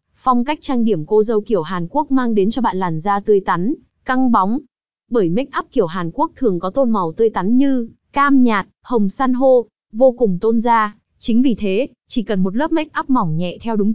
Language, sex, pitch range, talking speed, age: Vietnamese, female, 205-255 Hz, 230 wpm, 20-39